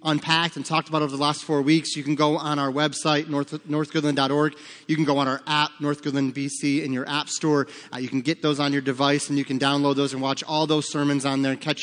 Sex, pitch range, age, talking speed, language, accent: male, 145-170 Hz, 30-49, 255 wpm, English, American